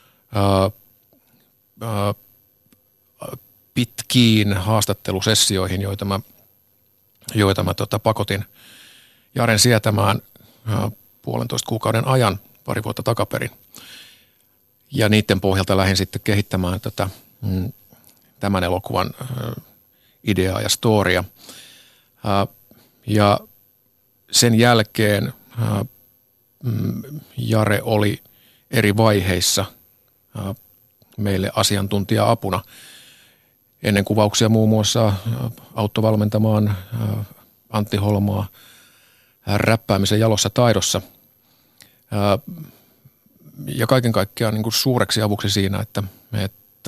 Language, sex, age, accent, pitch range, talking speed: Finnish, male, 50-69, native, 100-120 Hz, 70 wpm